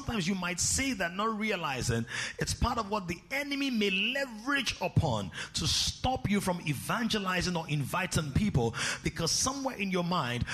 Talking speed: 165 wpm